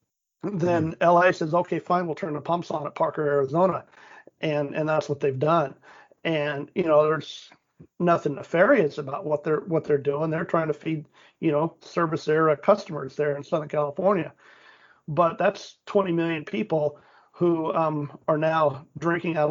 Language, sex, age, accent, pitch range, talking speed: English, male, 40-59, American, 150-175 Hz, 170 wpm